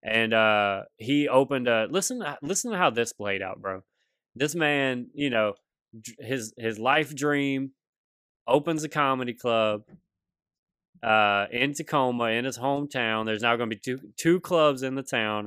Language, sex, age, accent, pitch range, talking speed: English, male, 20-39, American, 115-150 Hz, 165 wpm